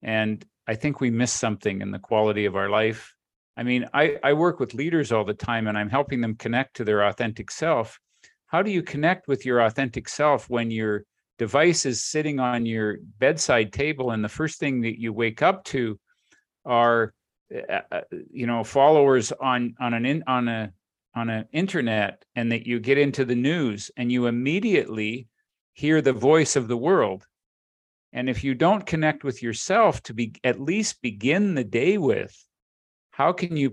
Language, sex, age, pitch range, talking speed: English, male, 50-69, 115-140 Hz, 185 wpm